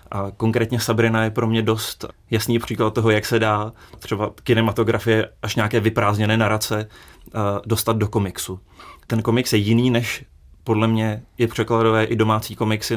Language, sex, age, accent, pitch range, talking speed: Czech, male, 30-49, native, 105-115 Hz, 155 wpm